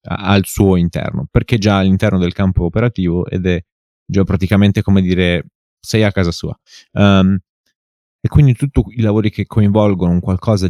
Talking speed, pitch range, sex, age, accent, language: 155 wpm, 85-105 Hz, male, 30-49, native, Italian